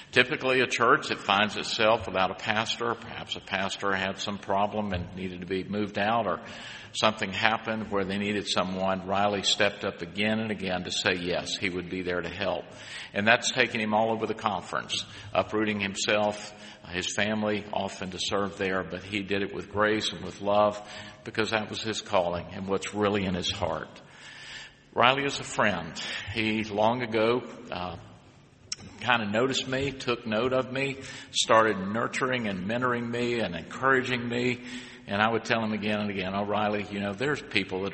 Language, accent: English, American